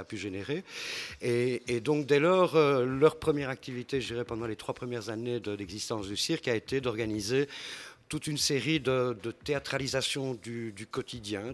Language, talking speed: French, 175 wpm